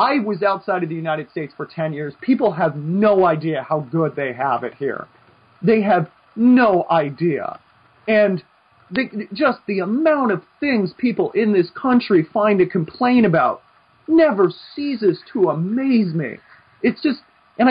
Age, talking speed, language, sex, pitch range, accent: 30-49, 155 wpm, English, male, 160-220 Hz, American